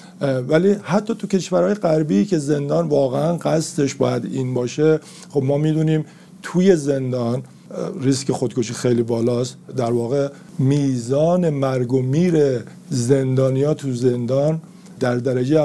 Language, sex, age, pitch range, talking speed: Persian, male, 50-69, 125-155 Hz, 115 wpm